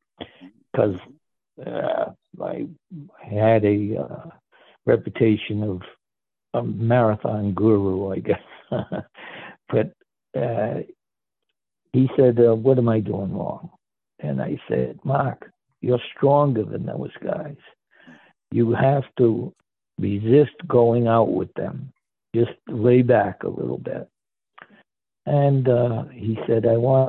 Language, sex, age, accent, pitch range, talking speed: English, male, 60-79, American, 105-125 Hz, 115 wpm